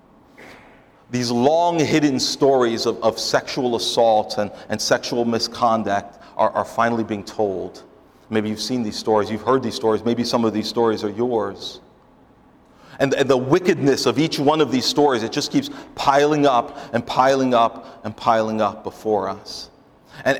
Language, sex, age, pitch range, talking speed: English, male, 40-59, 110-135 Hz, 165 wpm